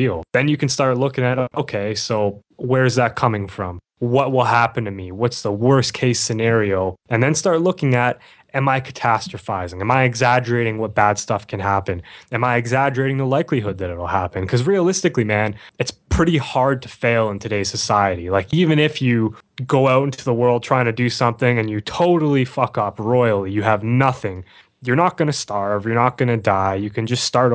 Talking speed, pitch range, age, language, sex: 205 wpm, 105-130 Hz, 10-29, English, male